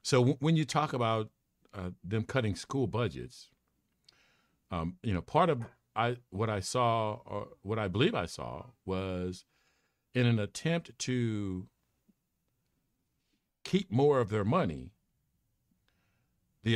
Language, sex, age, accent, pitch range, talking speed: English, male, 50-69, American, 95-125 Hz, 125 wpm